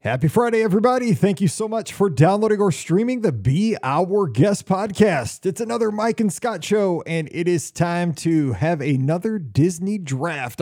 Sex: male